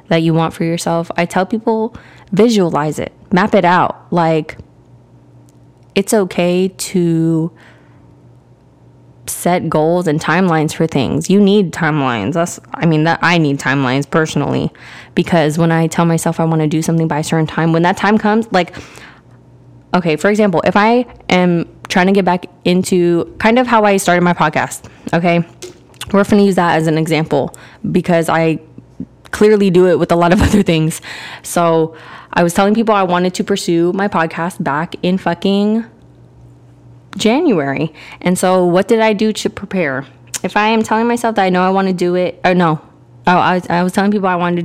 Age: 20-39